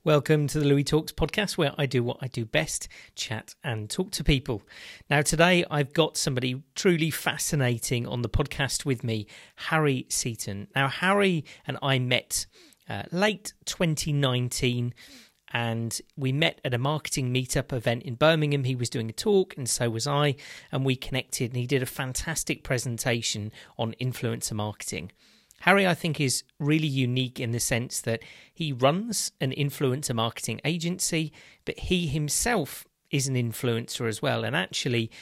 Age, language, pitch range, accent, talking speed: 40-59, English, 120-150 Hz, British, 165 wpm